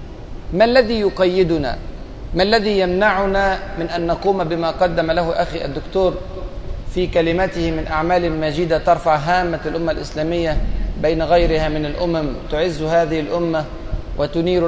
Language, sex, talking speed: Arabic, male, 125 wpm